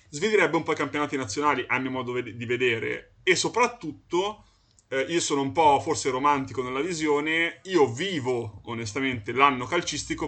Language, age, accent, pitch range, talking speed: Italian, 20-39, native, 120-150 Hz, 165 wpm